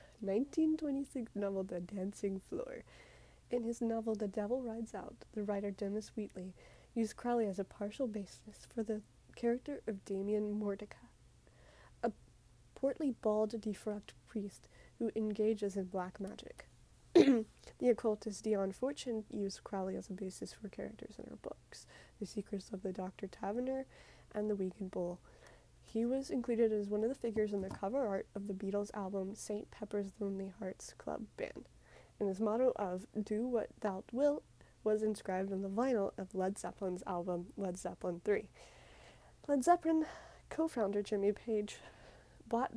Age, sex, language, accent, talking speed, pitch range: 20-39, female, English, American, 155 wpm, 195-230 Hz